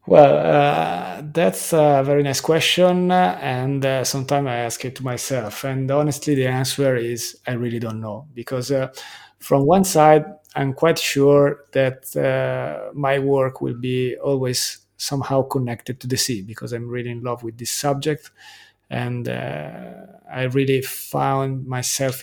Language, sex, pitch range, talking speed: English, male, 120-145 Hz, 155 wpm